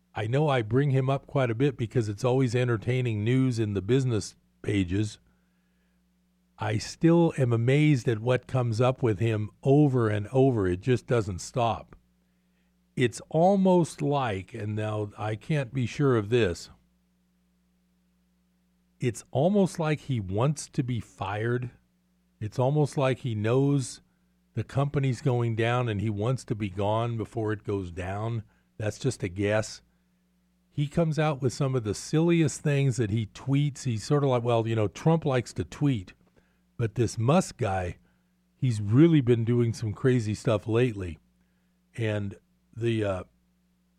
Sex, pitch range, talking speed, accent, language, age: male, 100-140 Hz, 155 wpm, American, English, 50-69